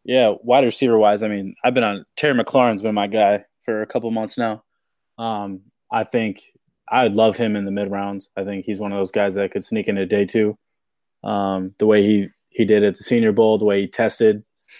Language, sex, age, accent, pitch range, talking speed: English, male, 20-39, American, 105-125 Hz, 225 wpm